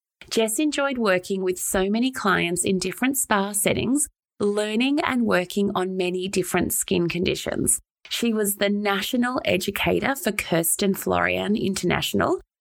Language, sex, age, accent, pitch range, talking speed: English, female, 20-39, Australian, 185-235 Hz, 135 wpm